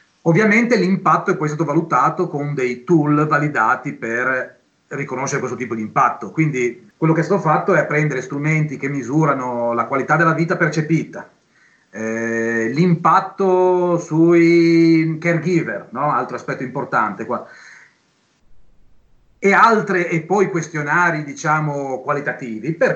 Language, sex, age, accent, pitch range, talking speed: Italian, male, 30-49, native, 135-180 Hz, 130 wpm